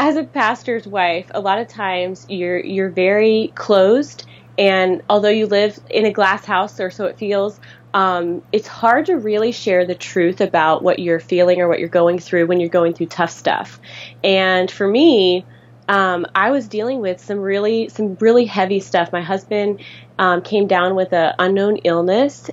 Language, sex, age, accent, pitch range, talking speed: English, female, 20-39, American, 180-205 Hz, 185 wpm